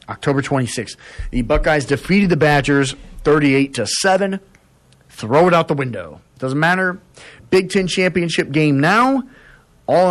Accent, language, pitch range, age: American, English, 115-155 Hz, 40-59